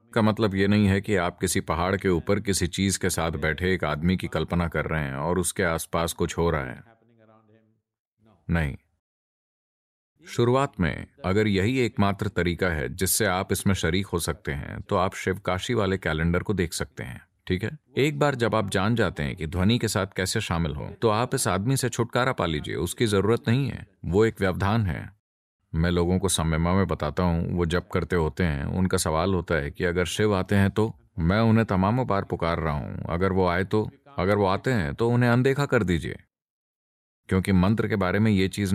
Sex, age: male, 40-59